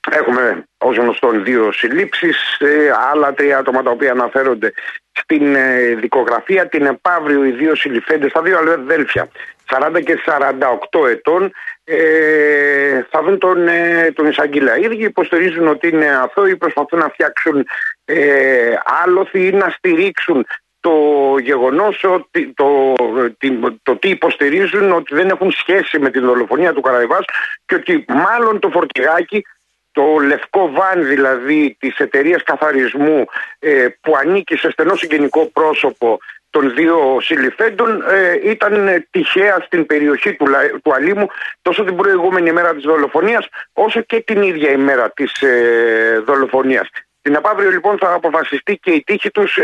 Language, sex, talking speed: Greek, male, 140 wpm